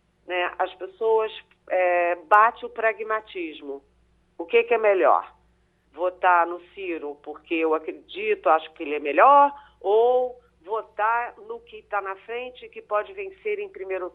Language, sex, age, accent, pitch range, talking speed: Portuguese, female, 40-59, Brazilian, 175-270 Hz, 150 wpm